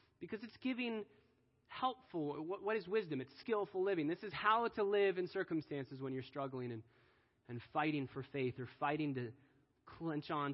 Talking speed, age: 170 wpm, 20-39